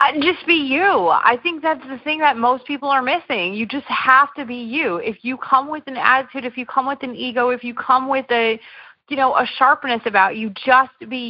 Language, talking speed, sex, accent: English, 235 wpm, female, American